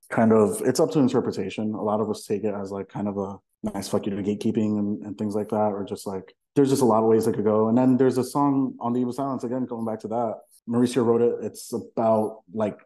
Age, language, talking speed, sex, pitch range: 30-49, English, 280 wpm, male, 100-115 Hz